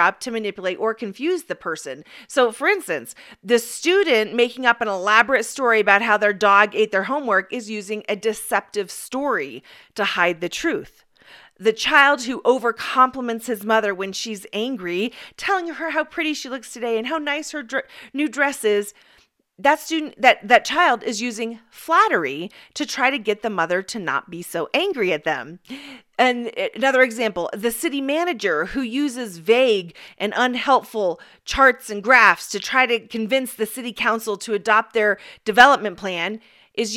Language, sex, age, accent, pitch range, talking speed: English, female, 40-59, American, 210-280 Hz, 170 wpm